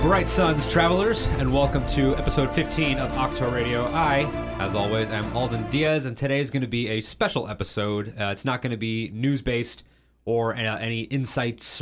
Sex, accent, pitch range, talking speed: male, American, 100-125 Hz, 195 wpm